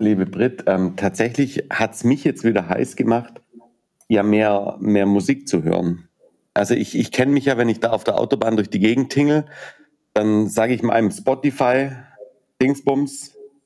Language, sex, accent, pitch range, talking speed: German, male, German, 105-140 Hz, 170 wpm